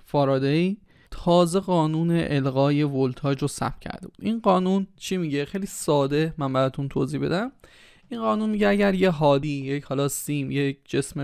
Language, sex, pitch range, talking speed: Persian, male, 140-180 Hz, 160 wpm